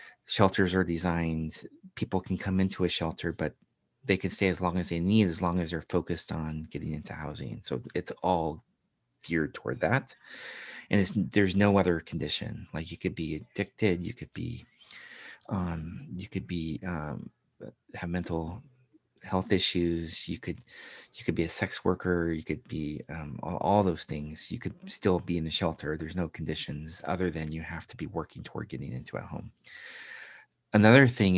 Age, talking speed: 30-49, 185 wpm